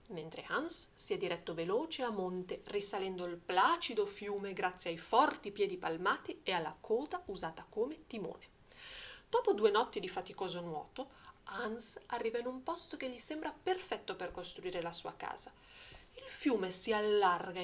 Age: 30-49